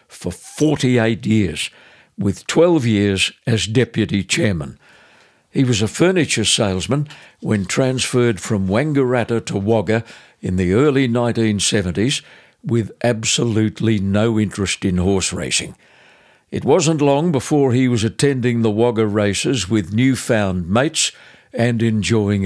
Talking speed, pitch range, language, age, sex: 125 wpm, 100-130 Hz, English, 60-79, male